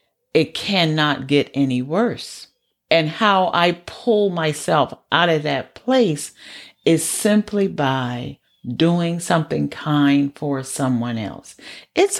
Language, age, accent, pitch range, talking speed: English, 50-69, American, 140-170 Hz, 120 wpm